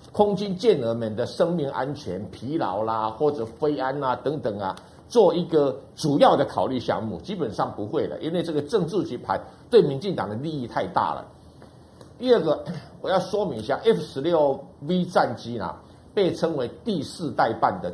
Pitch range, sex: 135-200 Hz, male